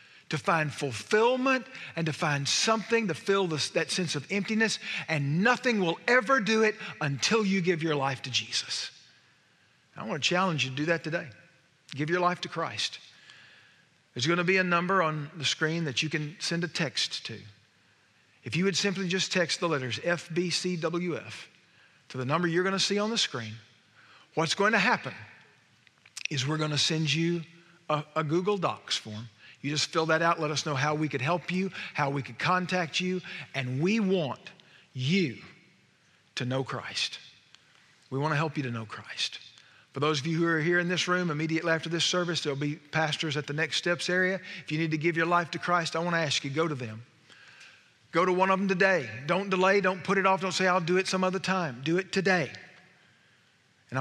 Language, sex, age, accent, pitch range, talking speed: English, male, 50-69, American, 145-185 Hz, 205 wpm